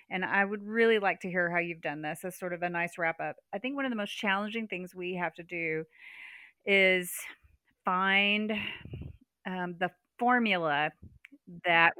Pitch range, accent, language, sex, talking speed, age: 175-235 Hz, American, English, female, 180 wpm, 30-49